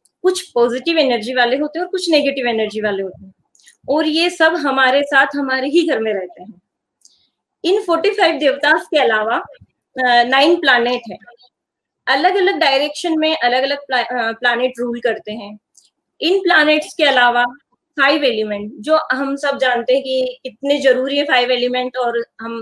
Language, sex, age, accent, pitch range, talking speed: Hindi, female, 20-39, native, 245-310 Hz, 160 wpm